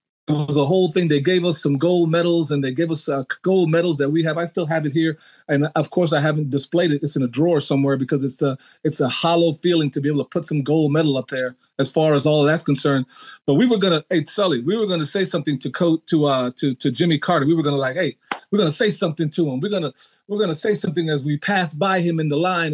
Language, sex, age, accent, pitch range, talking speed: English, male, 40-59, American, 150-195 Hz, 275 wpm